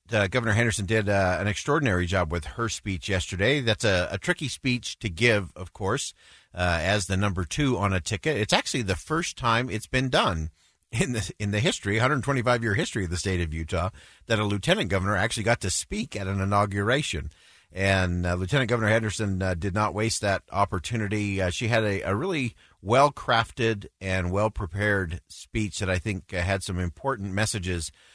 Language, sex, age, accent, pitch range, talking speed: English, male, 50-69, American, 90-110 Hz, 190 wpm